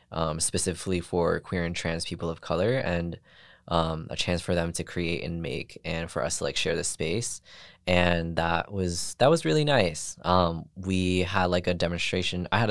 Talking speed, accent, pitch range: 200 wpm, American, 80-90 Hz